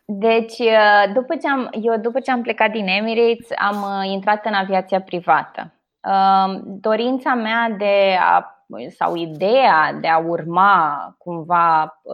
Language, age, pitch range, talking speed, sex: Romanian, 20-39, 190-235 Hz, 110 wpm, female